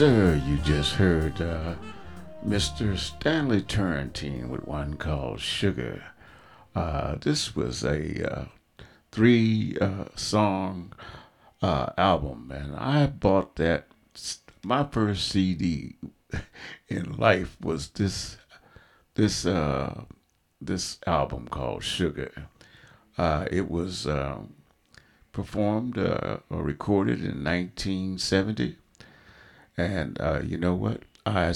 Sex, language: male, English